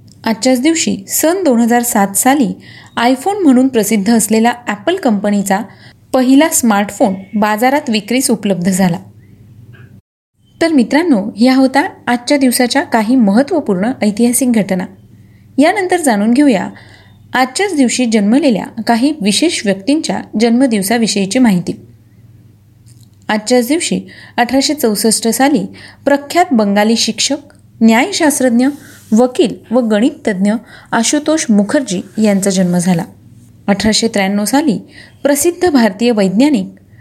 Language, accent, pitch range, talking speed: Marathi, native, 200-270 Hz, 100 wpm